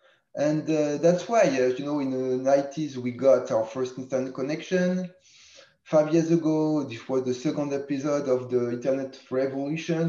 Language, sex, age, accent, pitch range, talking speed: English, male, 20-39, French, 130-165 Hz, 165 wpm